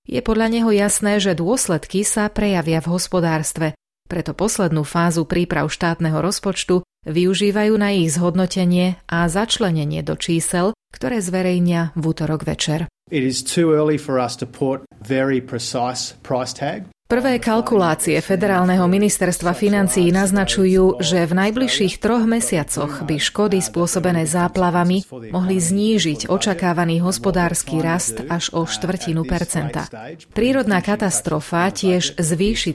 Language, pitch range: Slovak, 165-195 Hz